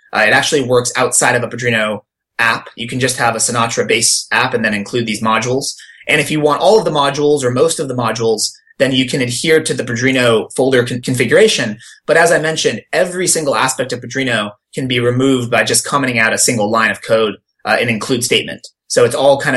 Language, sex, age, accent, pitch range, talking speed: English, male, 20-39, American, 120-140 Hz, 225 wpm